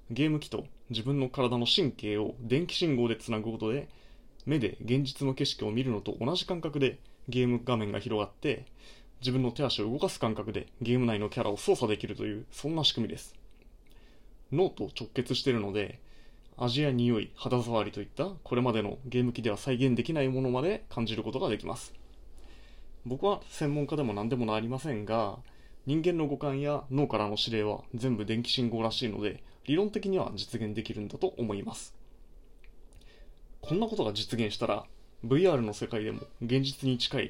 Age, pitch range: 20-39, 110-140 Hz